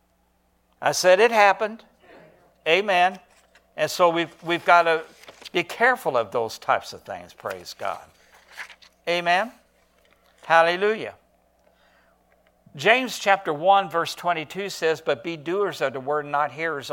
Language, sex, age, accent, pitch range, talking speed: English, male, 60-79, American, 135-195 Hz, 130 wpm